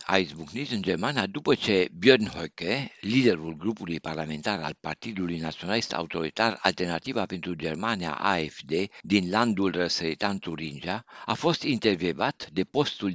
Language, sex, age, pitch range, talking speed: Romanian, male, 60-79, 85-115 Hz, 130 wpm